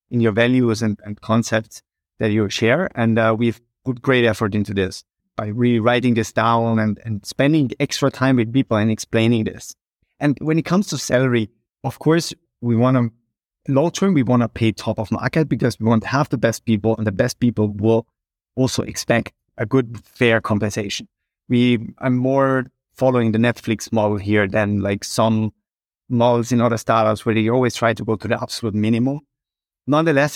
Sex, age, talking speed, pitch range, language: male, 30-49, 190 wpm, 110-130 Hz, English